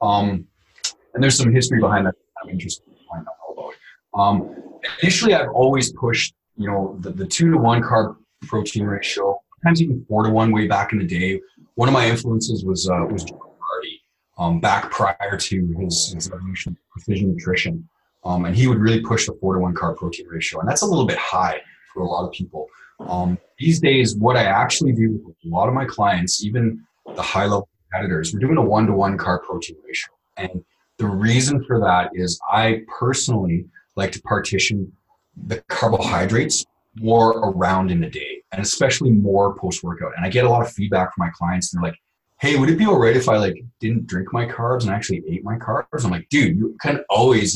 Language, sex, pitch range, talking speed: English, male, 95-120 Hz, 205 wpm